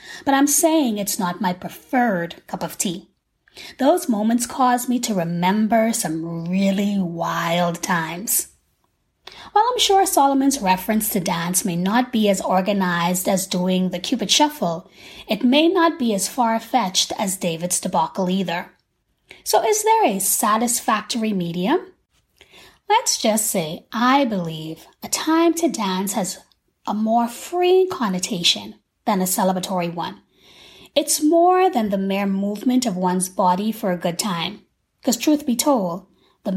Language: English